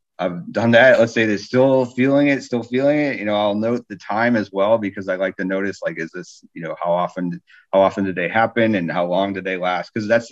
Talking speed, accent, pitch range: 260 wpm, American, 90-110 Hz